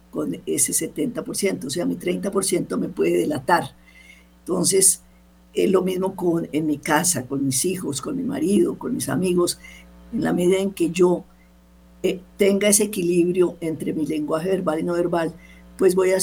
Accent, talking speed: American, 175 wpm